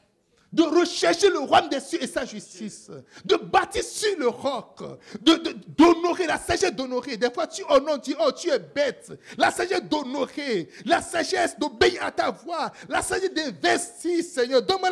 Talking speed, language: 175 wpm, French